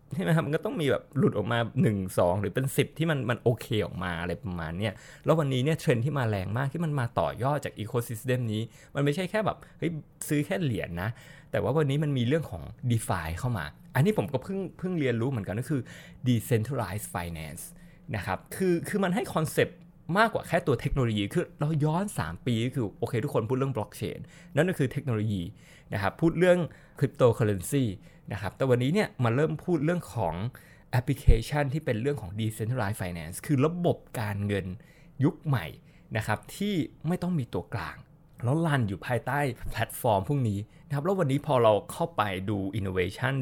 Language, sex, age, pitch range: Thai, male, 20-39, 105-155 Hz